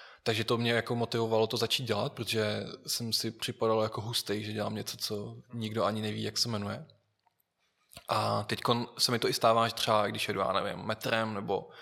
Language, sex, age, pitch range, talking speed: Czech, male, 20-39, 110-120 Hz, 195 wpm